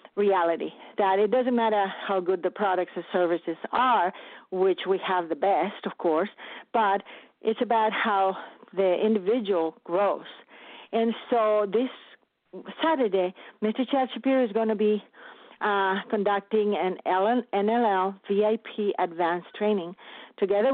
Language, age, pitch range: English, 40-59, 200-245 Hz